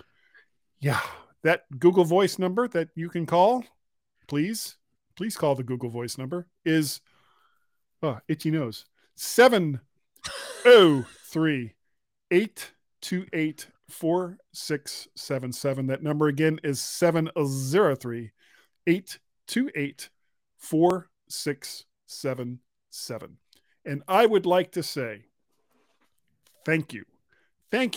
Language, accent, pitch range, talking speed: English, American, 140-205 Hz, 115 wpm